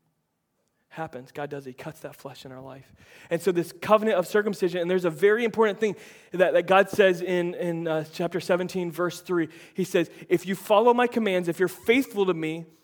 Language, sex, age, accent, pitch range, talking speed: English, male, 20-39, American, 140-180 Hz, 210 wpm